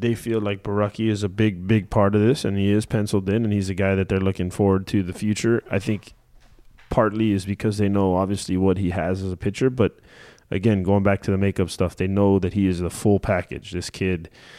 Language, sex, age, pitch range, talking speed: English, male, 20-39, 90-105 Hz, 245 wpm